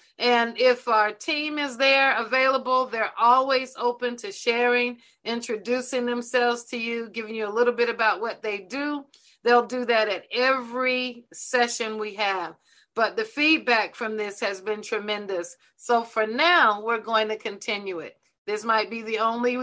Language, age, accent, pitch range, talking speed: English, 40-59, American, 215-250 Hz, 165 wpm